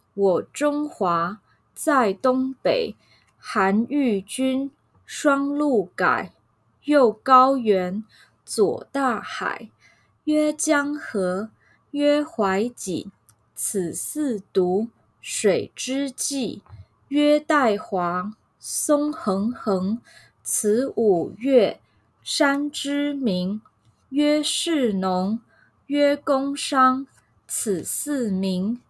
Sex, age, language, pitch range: female, 20-39, English, 195-280 Hz